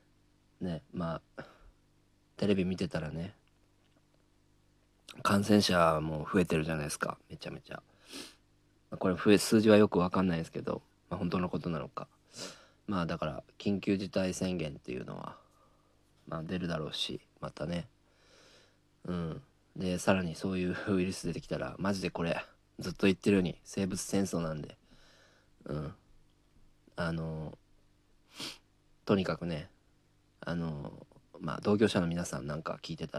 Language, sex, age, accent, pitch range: Japanese, male, 40-59, native, 85-100 Hz